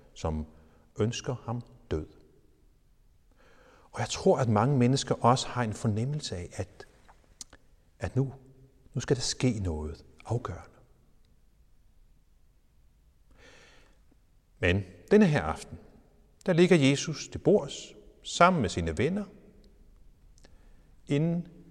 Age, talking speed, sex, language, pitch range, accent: 60-79, 105 wpm, male, Danish, 95-145 Hz, native